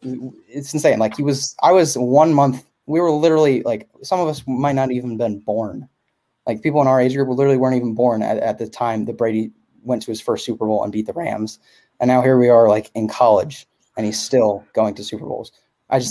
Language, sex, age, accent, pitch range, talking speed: English, male, 20-39, American, 115-150 Hz, 240 wpm